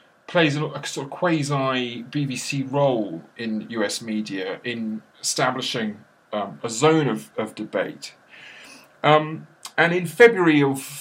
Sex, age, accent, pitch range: male, 40-59, British, 115-160 Hz